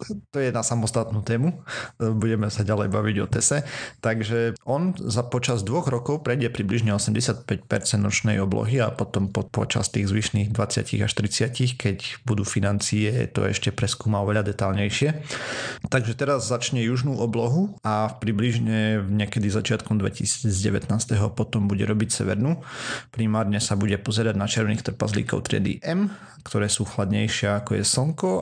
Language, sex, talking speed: Slovak, male, 140 wpm